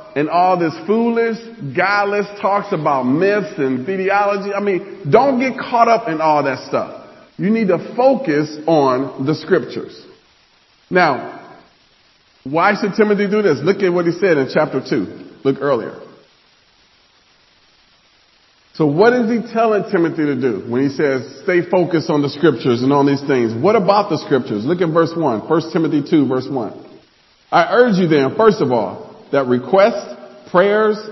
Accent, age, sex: American, 40-59, male